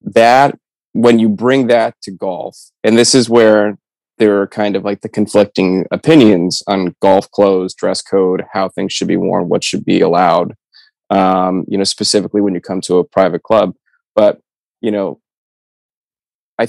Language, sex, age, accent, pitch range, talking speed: English, male, 20-39, American, 95-110 Hz, 175 wpm